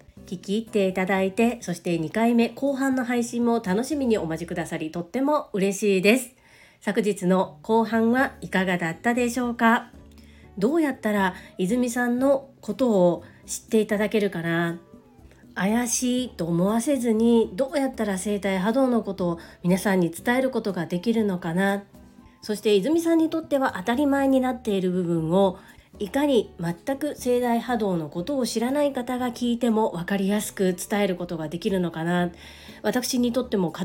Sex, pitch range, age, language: female, 185-245 Hz, 40-59, Japanese